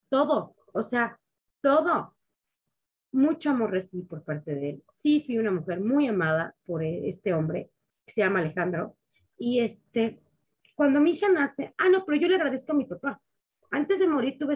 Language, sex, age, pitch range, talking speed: Spanish, female, 30-49, 210-280 Hz, 175 wpm